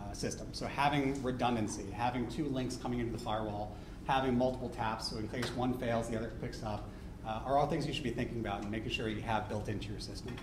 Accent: American